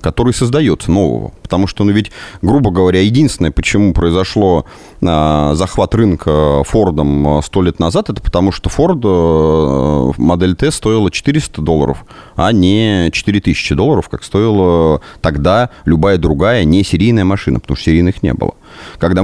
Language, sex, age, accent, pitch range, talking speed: Russian, male, 30-49, native, 80-105 Hz, 145 wpm